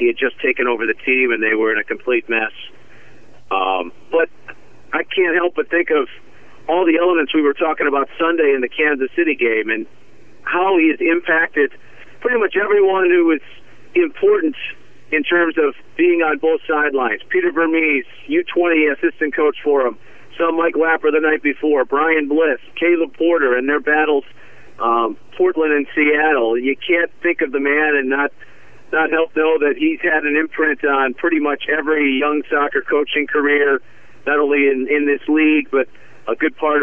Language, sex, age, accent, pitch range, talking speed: English, male, 40-59, American, 135-160 Hz, 180 wpm